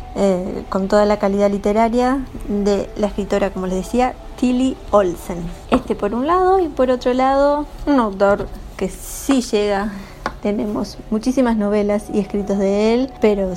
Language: Spanish